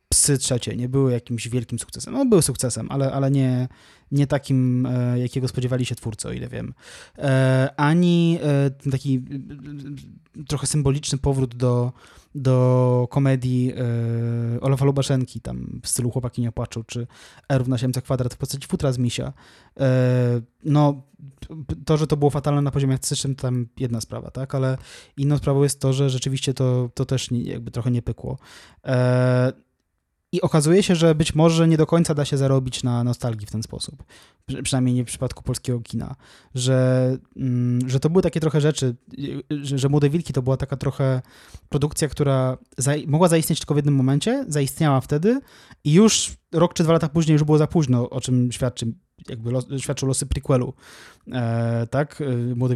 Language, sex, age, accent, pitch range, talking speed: Polish, male, 20-39, native, 125-150 Hz, 175 wpm